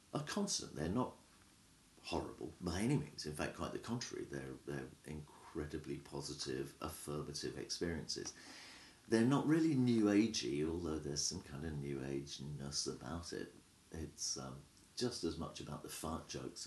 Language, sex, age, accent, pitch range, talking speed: English, male, 50-69, British, 70-95 Hz, 150 wpm